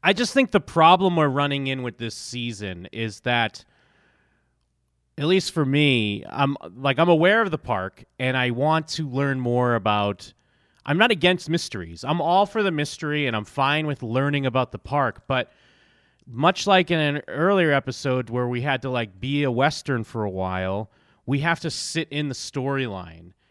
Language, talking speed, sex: English, 185 wpm, male